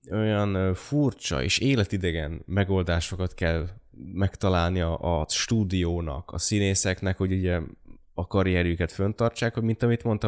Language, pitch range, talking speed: Hungarian, 85-110 Hz, 115 wpm